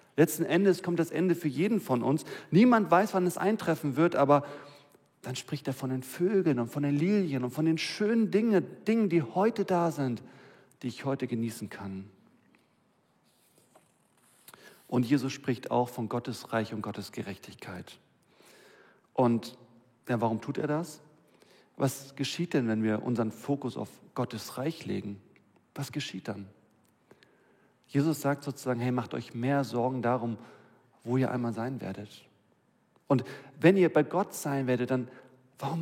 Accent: German